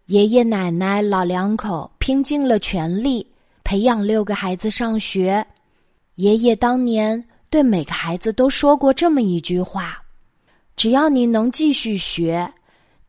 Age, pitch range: 20-39, 190-255 Hz